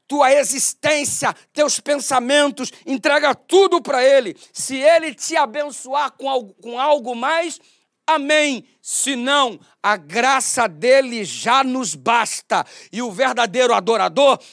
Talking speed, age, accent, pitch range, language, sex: 110 wpm, 40-59, Brazilian, 235-290 Hz, Portuguese, male